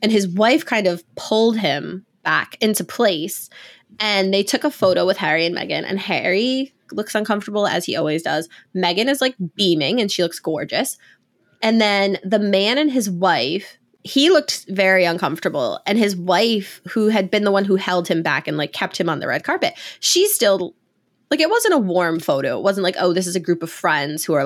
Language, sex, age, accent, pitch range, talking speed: English, female, 20-39, American, 175-220 Hz, 210 wpm